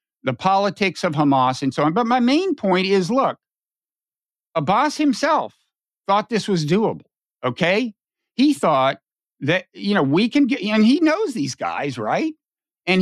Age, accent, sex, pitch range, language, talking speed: 50-69, American, male, 150-215 Hz, English, 160 wpm